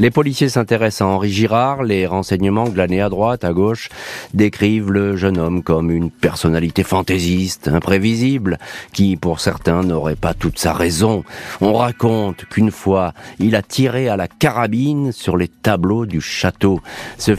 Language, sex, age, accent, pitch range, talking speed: French, male, 40-59, French, 90-110 Hz, 160 wpm